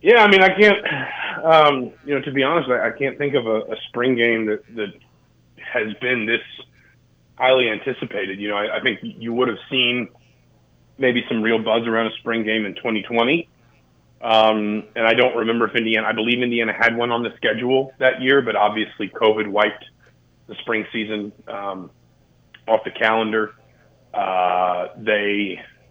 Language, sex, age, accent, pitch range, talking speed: English, male, 30-49, American, 105-125 Hz, 175 wpm